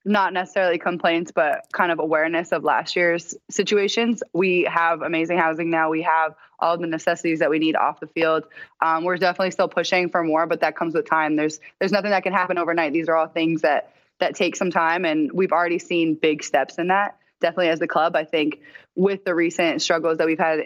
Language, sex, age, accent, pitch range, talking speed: English, female, 20-39, American, 160-185 Hz, 220 wpm